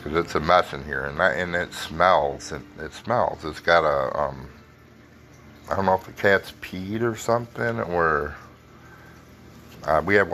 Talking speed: 180 wpm